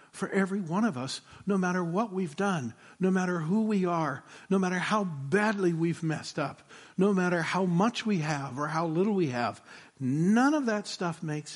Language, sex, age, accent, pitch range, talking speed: English, male, 60-79, American, 140-190 Hz, 195 wpm